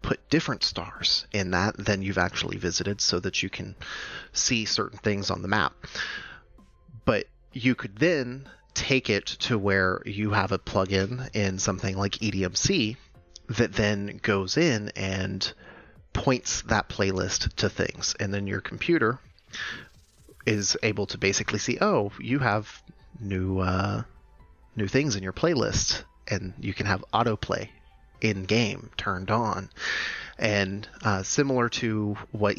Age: 30-49